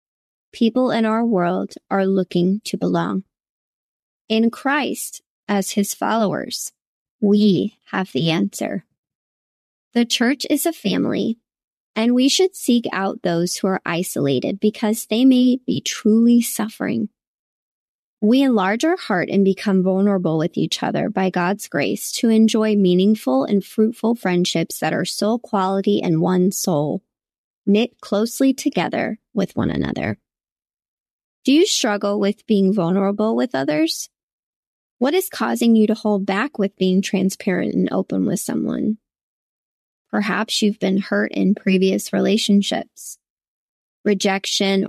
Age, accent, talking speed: 20-39, American, 130 wpm